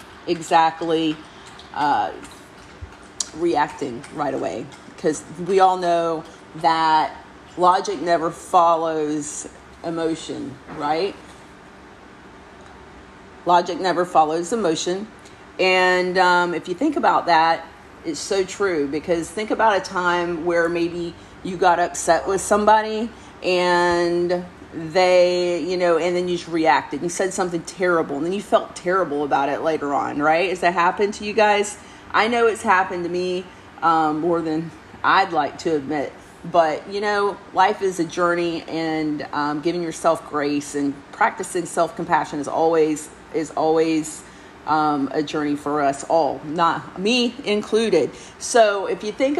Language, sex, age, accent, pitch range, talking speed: English, female, 40-59, American, 160-185 Hz, 140 wpm